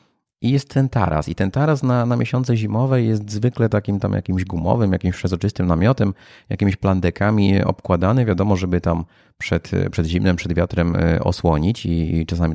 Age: 30-49